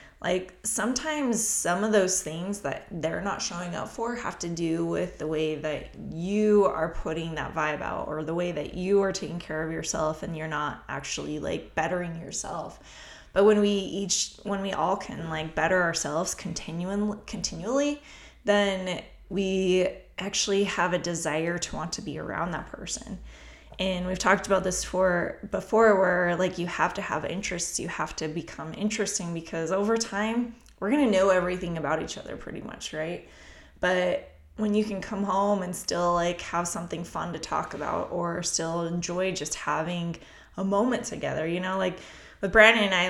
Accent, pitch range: American, 165-200 Hz